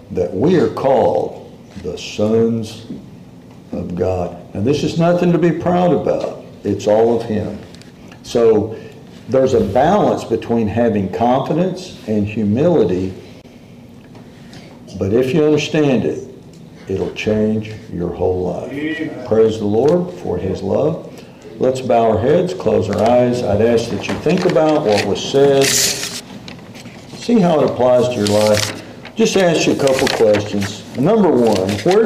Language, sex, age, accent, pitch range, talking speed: English, male, 60-79, American, 105-135 Hz, 145 wpm